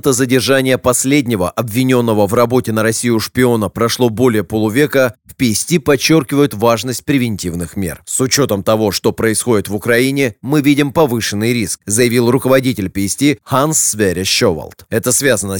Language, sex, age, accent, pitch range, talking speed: Russian, male, 30-49, native, 110-145 Hz, 140 wpm